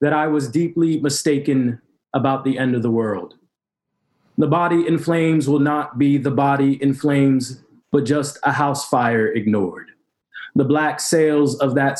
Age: 20-39